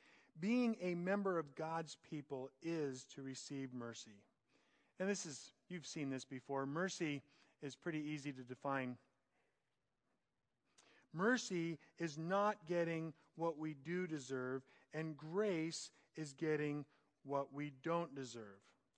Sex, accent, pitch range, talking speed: male, American, 140-180 Hz, 125 wpm